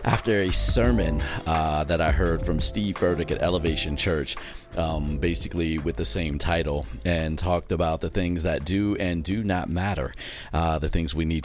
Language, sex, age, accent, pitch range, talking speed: English, male, 40-59, American, 85-110 Hz, 185 wpm